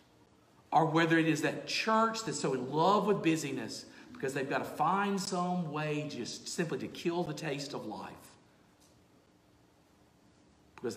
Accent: American